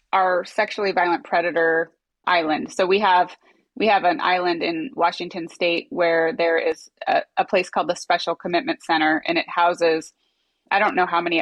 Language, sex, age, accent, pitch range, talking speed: English, female, 20-39, American, 170-205 Hz, 180 wpm